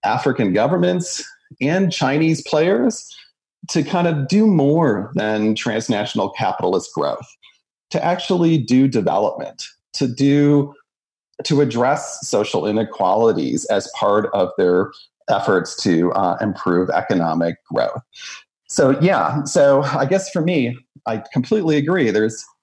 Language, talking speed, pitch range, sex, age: English, 120 wpm, 120-175 Hz, male, 40-59